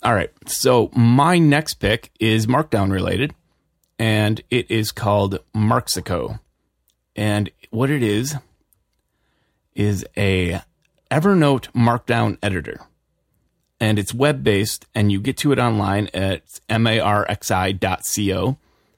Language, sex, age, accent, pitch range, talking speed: English, male, 30-49, American, 100-120 Hz, 110 wpm